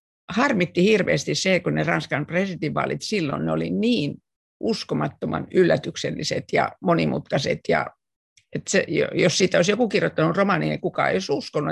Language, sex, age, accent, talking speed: Finnish, female, 50-69, native, 150 wpm